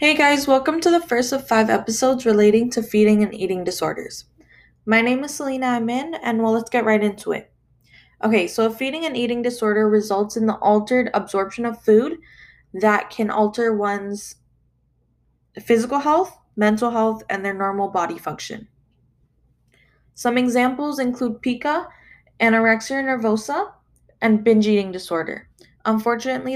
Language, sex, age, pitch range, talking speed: English, female, 10-29, 200-245 Hz, 145 wpm